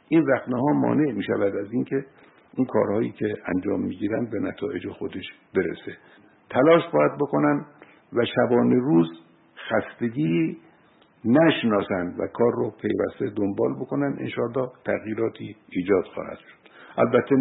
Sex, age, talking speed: male, 60-79, 135 wpm